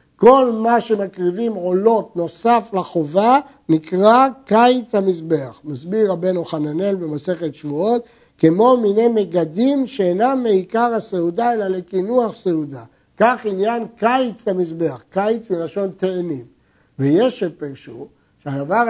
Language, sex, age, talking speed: Hebrew, male, 60-79, 105 wpm